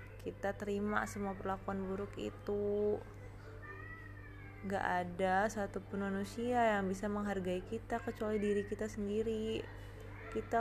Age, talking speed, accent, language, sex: 20-39, 115 wpm, native, Indonesian, female